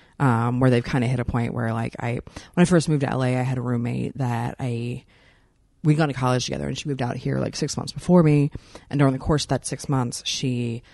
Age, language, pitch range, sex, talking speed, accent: 30-49, English, 120-145 Hz, female, 260 wpm, American